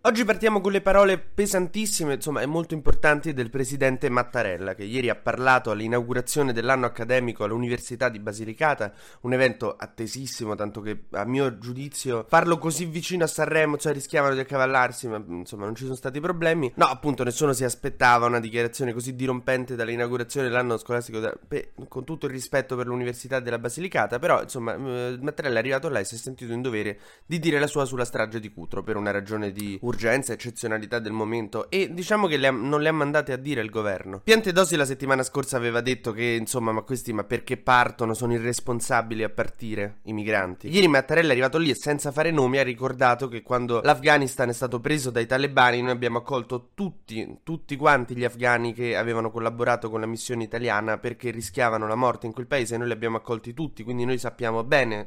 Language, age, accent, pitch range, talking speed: Italian, 20-39, native, 115-140 Hz, 195 wpm